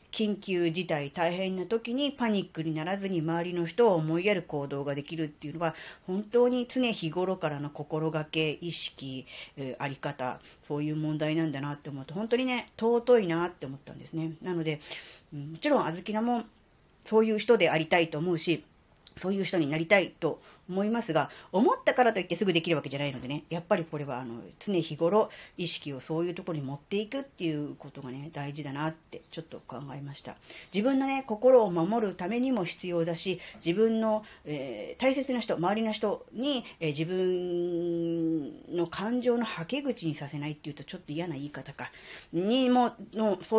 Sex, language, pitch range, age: female, Japanese, 155-225 Hz, 40-59